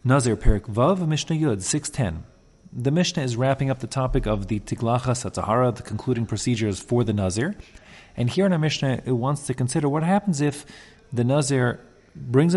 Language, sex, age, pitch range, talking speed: English, male, 30-49, 105-140 Hz, 180 wpm